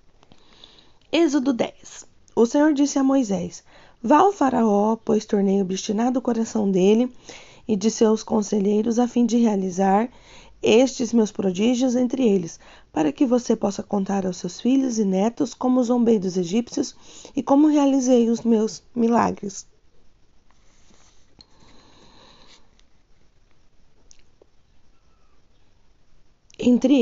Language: Portuguese